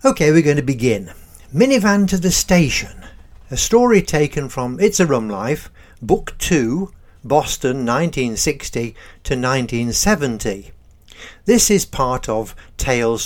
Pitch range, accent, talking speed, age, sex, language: 110-180 Hz, British, 125 wpm, 60-79, male, English